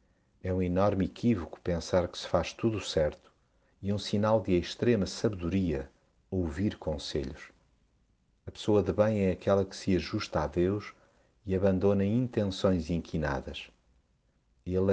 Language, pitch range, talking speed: Portuguese, 80-100 Hz, 135 wpm